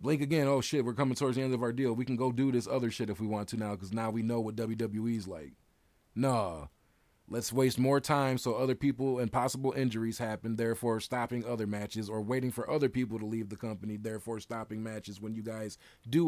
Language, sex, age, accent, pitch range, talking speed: English, male, 30-49, American, 110-130 Hz, 235 wpm